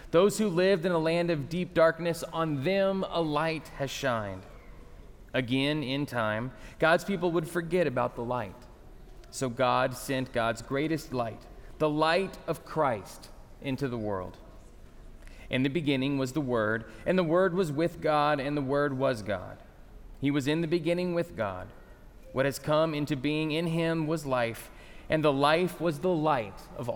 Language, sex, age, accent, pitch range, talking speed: English, male, 30-49, American, 120-155 Hz, 175 wpm